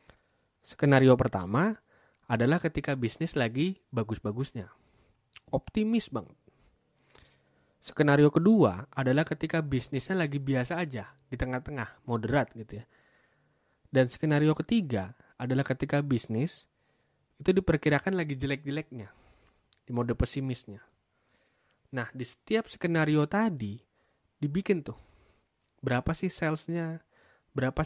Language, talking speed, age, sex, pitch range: Indonesian, 100 wpm, 20-39, male, 120-155 Hz